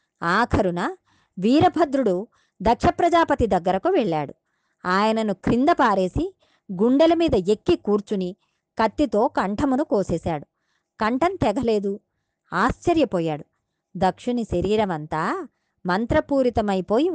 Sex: male